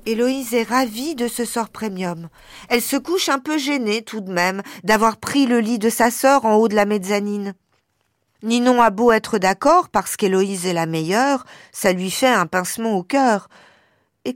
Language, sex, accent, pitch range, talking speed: French, female, French, 205-270 Hz, 190 wpm